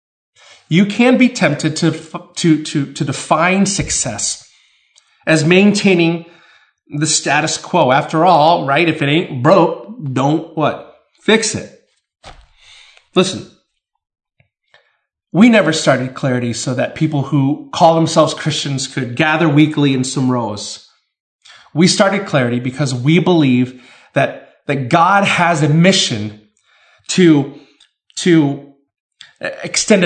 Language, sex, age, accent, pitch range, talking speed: English, male, 30-49, American, 145-200 Hz, 120 wpm